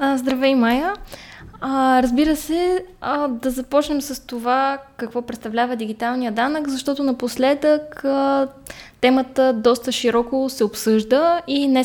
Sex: female